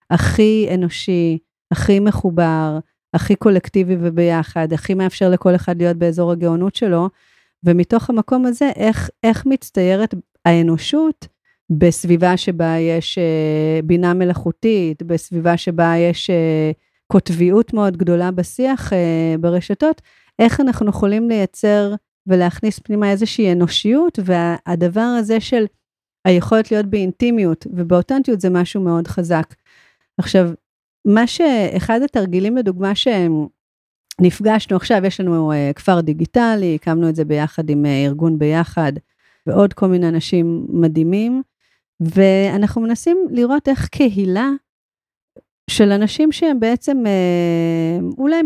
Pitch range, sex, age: 170-220 Hz, female, 40-59